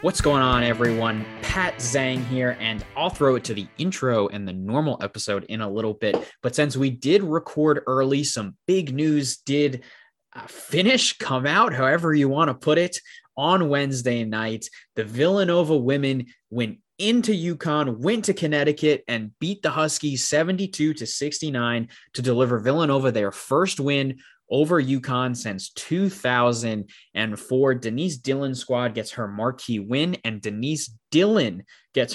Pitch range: 110-145 Hz